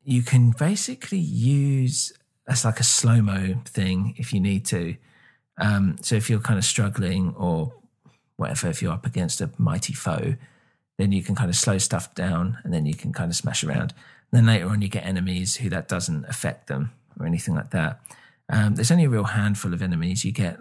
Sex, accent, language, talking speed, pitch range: male, British, English, 205 wpm, 95-120 Hz